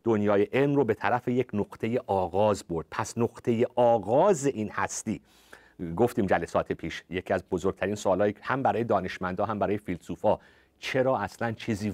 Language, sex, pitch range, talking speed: Persian, male, 95-125 Hz, 155 wpm